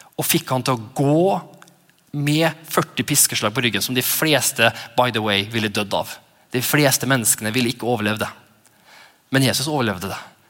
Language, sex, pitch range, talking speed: English, male, 110-145 Hz, 165 wpm